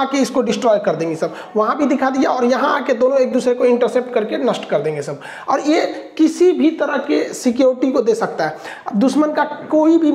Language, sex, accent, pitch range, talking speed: Hindi, male, native, 235-280 Hz, 225 wpm